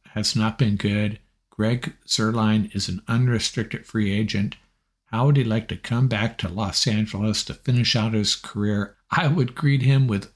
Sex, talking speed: male, 180 wpm